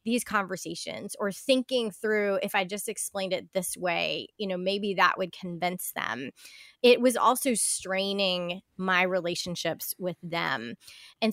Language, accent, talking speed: English, American, 150 wpm